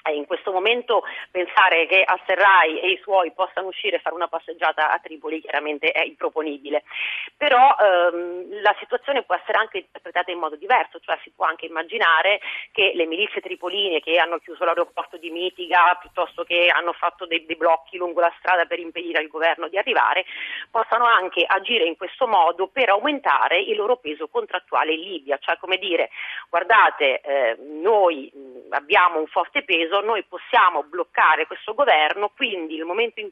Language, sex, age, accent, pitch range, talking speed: Italian, female, 30-49, native, 165-215 Hz, 170 wpm